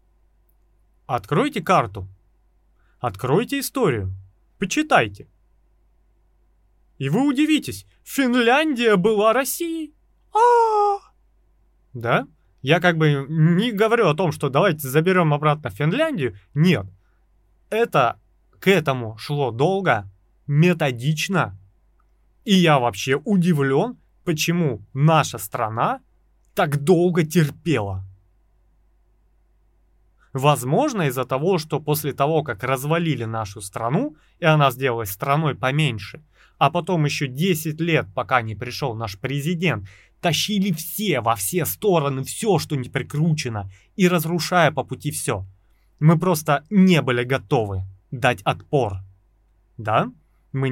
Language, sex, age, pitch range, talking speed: Russian, male, 30-49, 115-175 Hz, 105 wpm